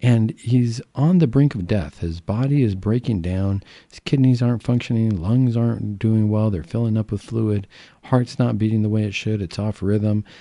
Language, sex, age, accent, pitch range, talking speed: English, male, 50-69, American, 100-125 Hz, 200 wpm